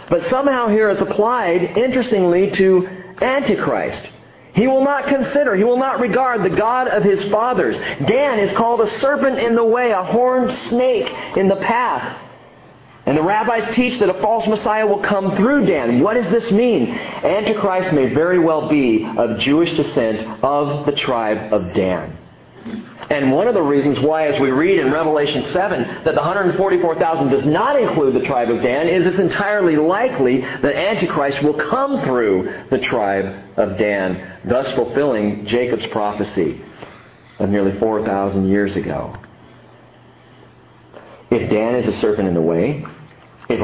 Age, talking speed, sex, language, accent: 40-59, 160 wpm, male, English, American